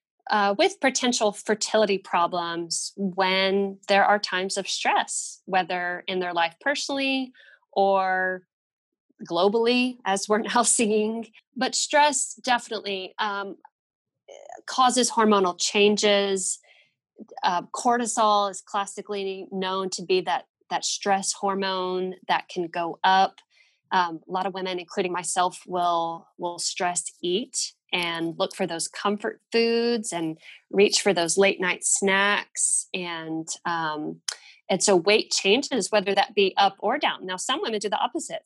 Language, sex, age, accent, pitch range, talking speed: English, female, 20-39, American, 175-215 Hz, 135 wpm